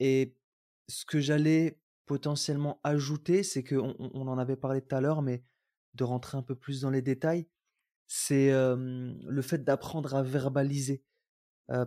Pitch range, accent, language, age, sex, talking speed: 135-175 Hz, French, French, 20-39, male, 160 wpm